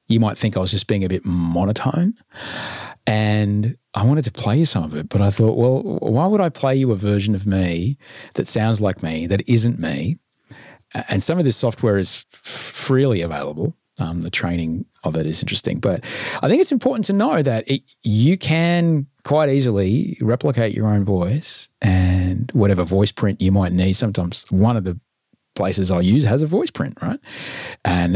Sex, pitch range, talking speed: male, 95-130 Hz, 190 wpm